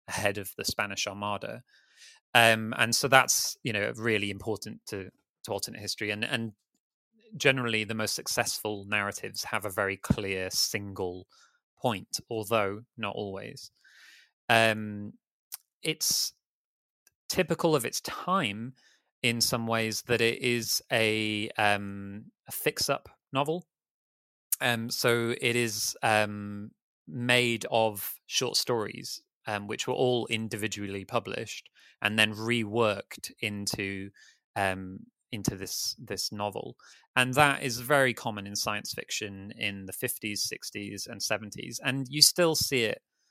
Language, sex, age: English, male, 20-39